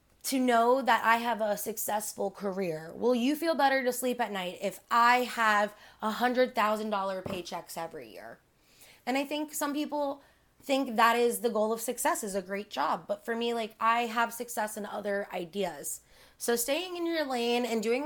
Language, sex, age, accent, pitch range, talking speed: English, female, 20-39, American, 205-250 Hz, 185 wpm